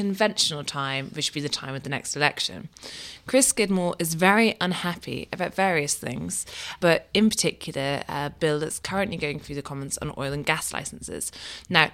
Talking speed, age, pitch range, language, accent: 180 wpm, 20-39, 145-190 Hz, English, British